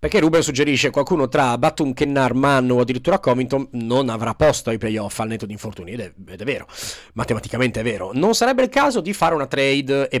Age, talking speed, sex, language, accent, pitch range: 30-49, 220 wpm, male, Italian, native, 120-150 Hz